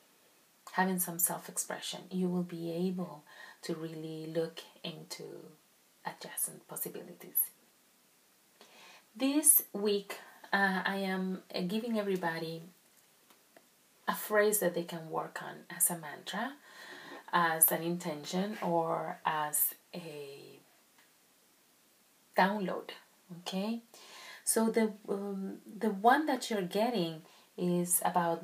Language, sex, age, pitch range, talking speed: English, female, 30-49, 170-210 Hz, 100 wpm